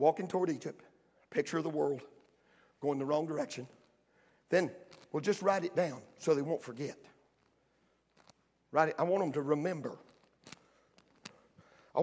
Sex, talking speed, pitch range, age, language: male, 145 wpm, 155-235 Hz, 50-69, English